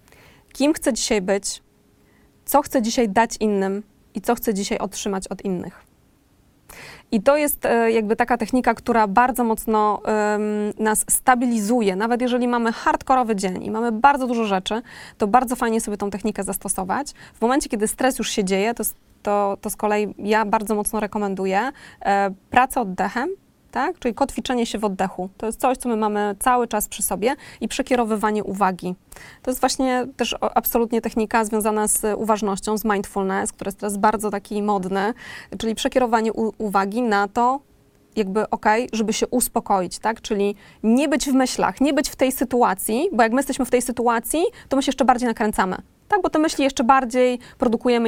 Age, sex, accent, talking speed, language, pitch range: 20-39, female, native, 175 wpm, Polish, 210-250 Hz